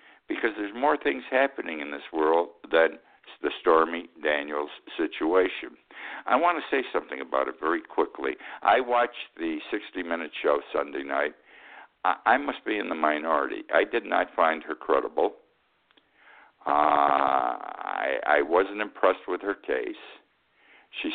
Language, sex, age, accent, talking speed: English, male, 60-79, American, 140 wpm